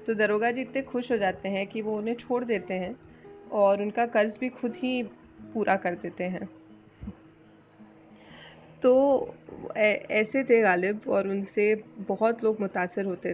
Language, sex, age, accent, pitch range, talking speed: Hindi, female, 20-39, native, 180-230 Hz, 155 wpm